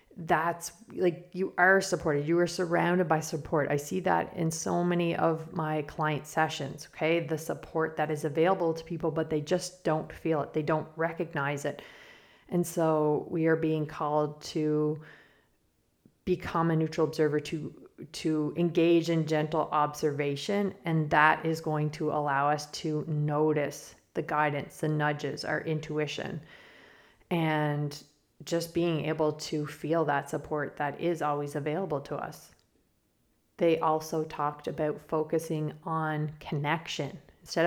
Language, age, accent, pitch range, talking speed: English, 30-49, American, 150-170 Hz, 145 wpm